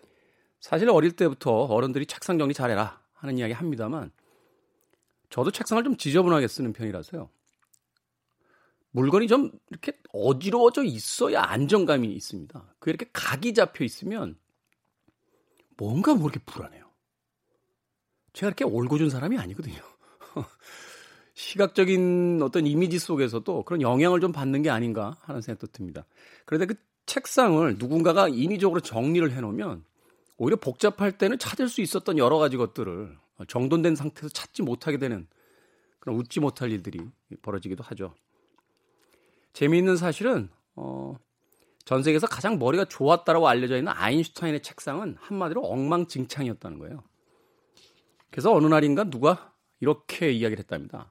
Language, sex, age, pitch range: Korean, male, 40-59, 120-185 Hz